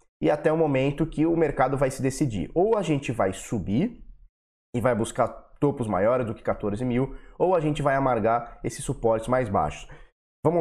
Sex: male